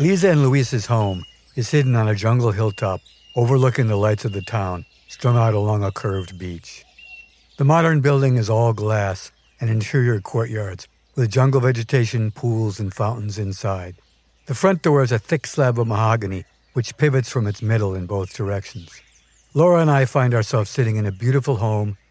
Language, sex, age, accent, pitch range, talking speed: English, male, 60-79, American, 105-135 Hz, 175 wpm